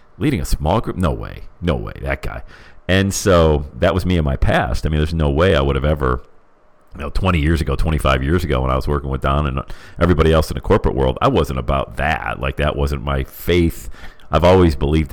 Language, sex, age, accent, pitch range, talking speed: English, male, 40-59, American, 70-85 Hz, 240 wpm